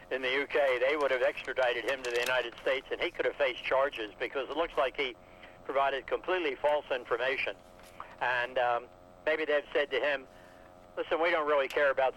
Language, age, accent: English, 60-79, American